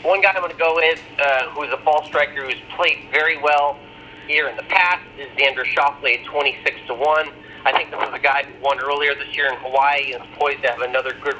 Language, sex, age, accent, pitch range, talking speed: English, male, 40-59, American, 130-155 Hz, 235 wpm